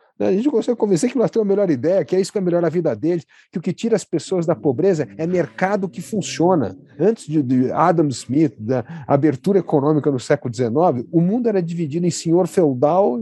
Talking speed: 220 wpm